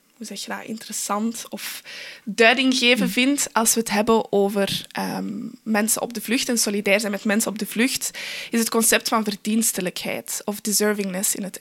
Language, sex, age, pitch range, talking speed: Dutch, female, 20-39, 205-235 Hz, 180 wpm